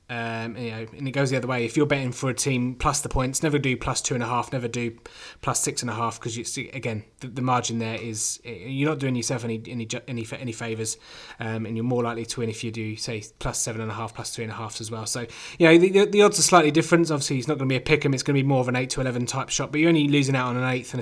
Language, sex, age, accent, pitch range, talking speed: English, male, 20-39, British, 120-145 Hz, 325 wpm